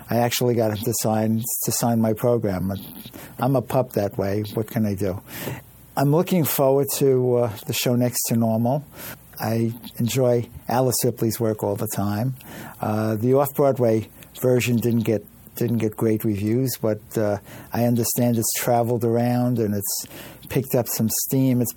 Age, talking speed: 60-79, 170 wpm